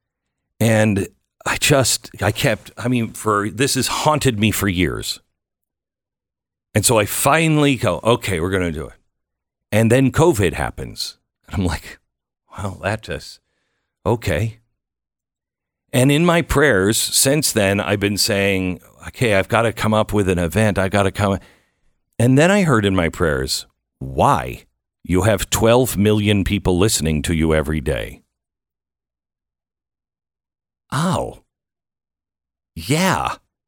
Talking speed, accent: 135 wpm, American